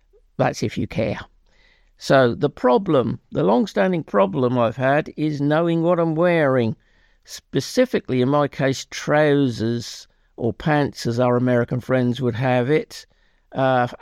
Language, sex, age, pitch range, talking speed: English, male, 50-69, 125-150 Hz, 135 wpm